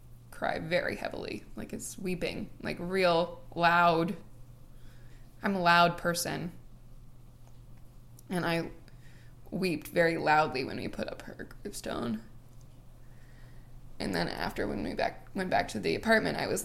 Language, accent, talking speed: English, American, 135 wpm